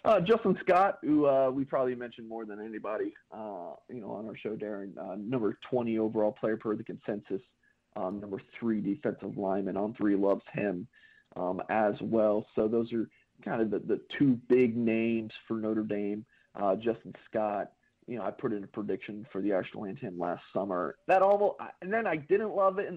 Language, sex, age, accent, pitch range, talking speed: English, male, 40-59, American, 110-140 Hz, 200 wpm